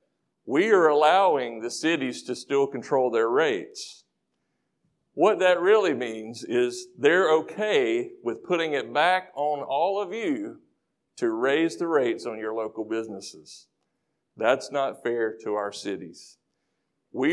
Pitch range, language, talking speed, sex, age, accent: 125-195 Hz, English, 140 wpm, male, 50-69, American